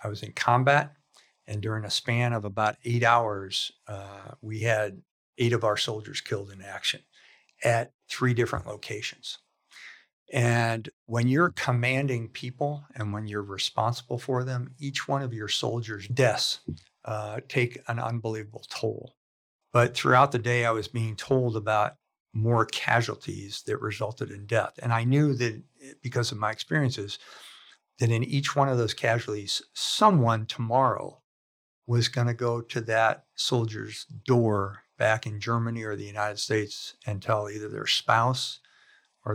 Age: 60-79